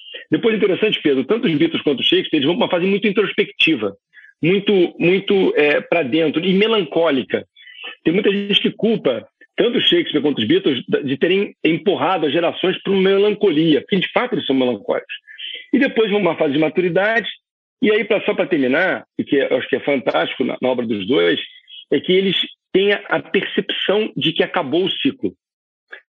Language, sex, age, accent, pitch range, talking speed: Portuguese, male, 50-69, Brazilian, 160-255 Hz, 190 wpm